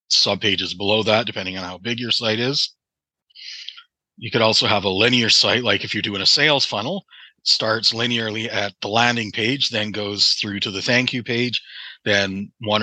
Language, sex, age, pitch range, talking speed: English, male, 30-49, 100-115 Hz, 195 wpm